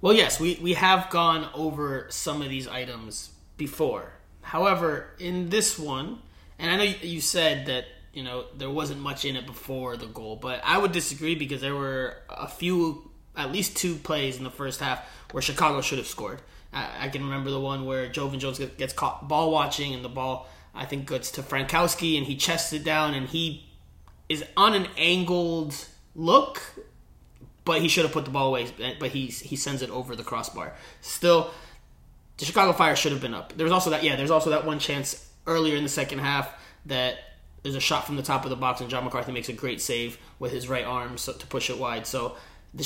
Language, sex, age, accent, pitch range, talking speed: English, male, 20-39, American, 130-160 Hz, 215 wpm